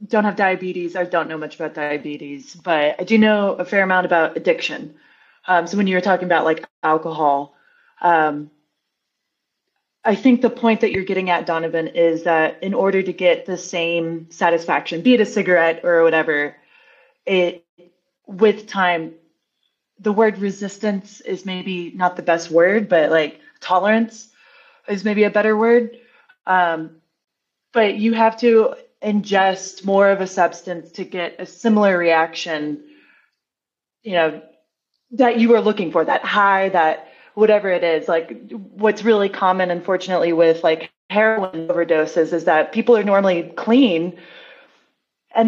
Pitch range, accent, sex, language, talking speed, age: 165-215 Hz, American, female, English, 155 wpm, 20-39